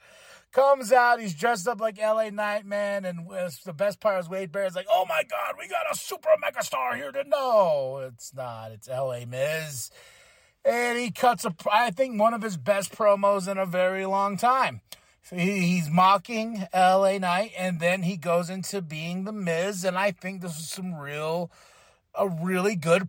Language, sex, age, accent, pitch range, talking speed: English, male, 30-49, American, 160-210 Hz, 195 wpm